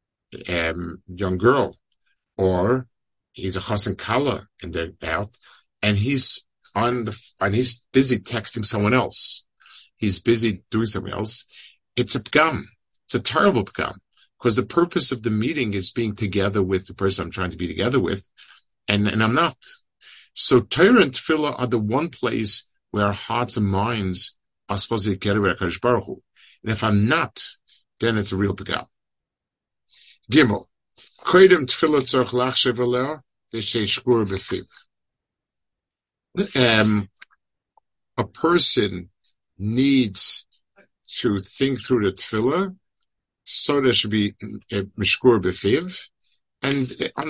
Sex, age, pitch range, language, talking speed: male, 50-69, 100-125 Hz, English, 125 wpm